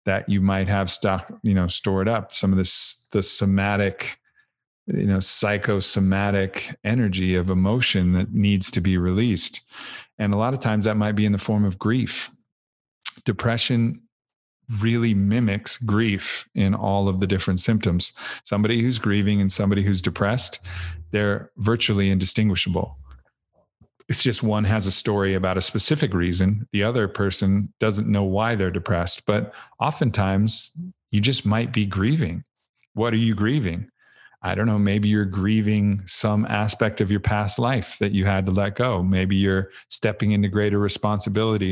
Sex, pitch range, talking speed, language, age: male, 95-110 Hz, 160 wpm, English, 40-59